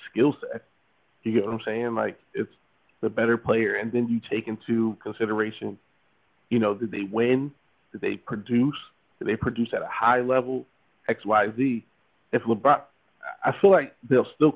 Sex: male